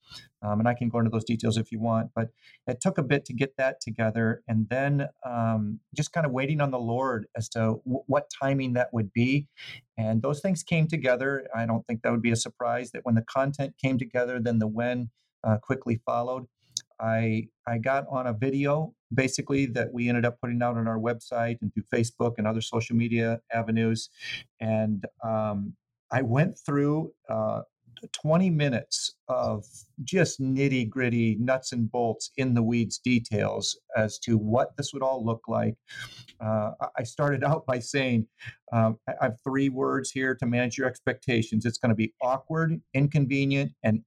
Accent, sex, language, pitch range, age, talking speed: American, male, English, 115-140 Hz, 40-59, 185 wpm